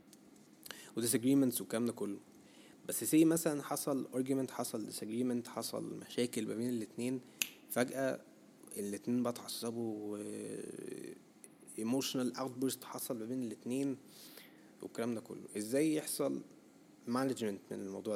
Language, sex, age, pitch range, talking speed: Arabic, male, 20-39, 110-135 Hz, 100 wpm